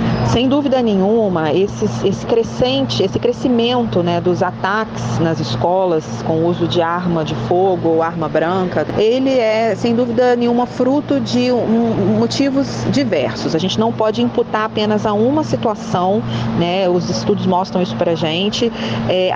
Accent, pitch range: Brazilian, 175-230 Hz